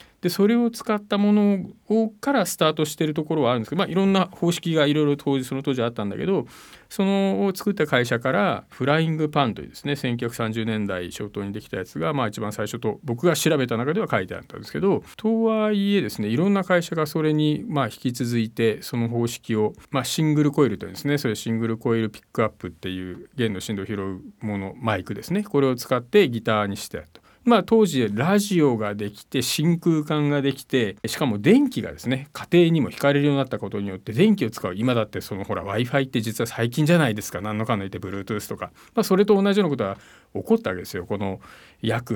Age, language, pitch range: 40-59, Japanese, 115-170 Hz